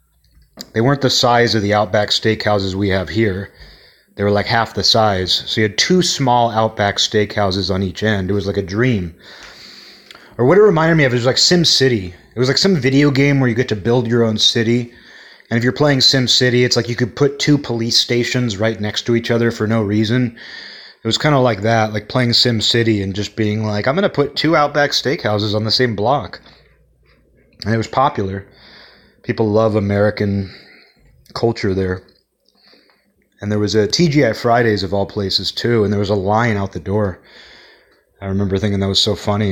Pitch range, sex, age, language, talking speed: 100-120 Hz, male, 30-49, English, 205 wpm